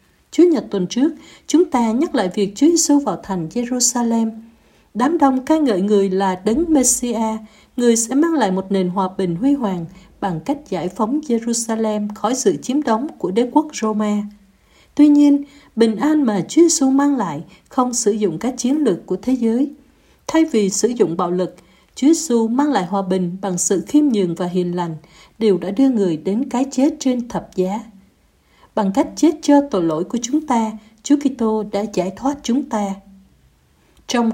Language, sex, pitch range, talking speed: Vietnamese, female, 190-270 Hz, 190 wpm